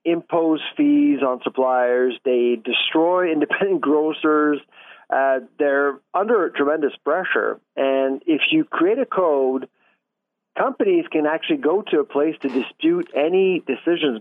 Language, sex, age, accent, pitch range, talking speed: English, male, 40-59, American, 130-185 Hz, 125 wpm